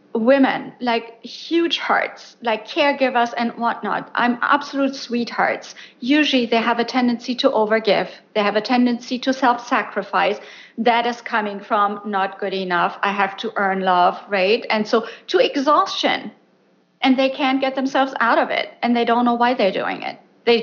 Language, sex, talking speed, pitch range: English, female, 170 wpm, 230-270 Hz